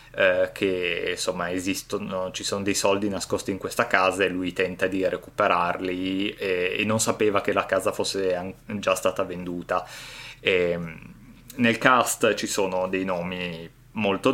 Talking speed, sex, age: 155 wpm, male, 20-39